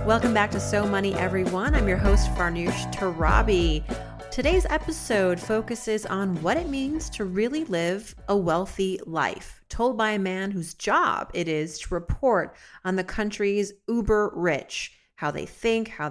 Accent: American